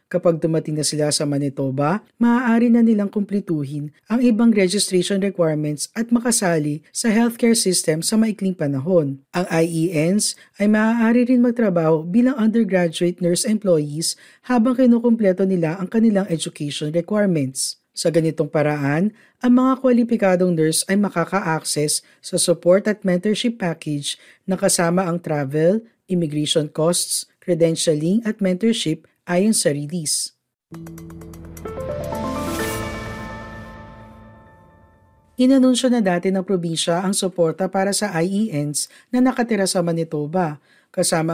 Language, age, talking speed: Filipino, 50-69, 115 wpm